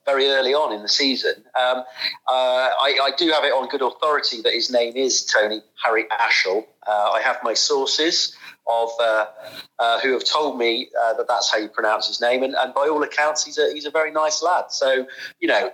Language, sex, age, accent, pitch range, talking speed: English, male, 40-59, British, 130-205 Hz, 220 wpm